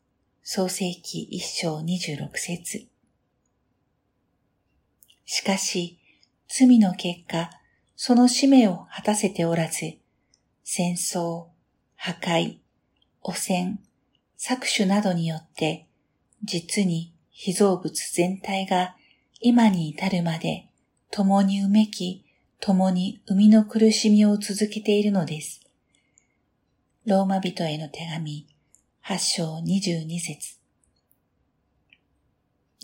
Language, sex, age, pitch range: Japanese, female, 50-69, 170-210 Hz